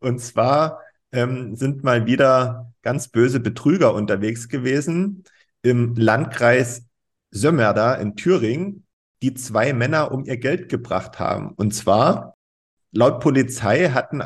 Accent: German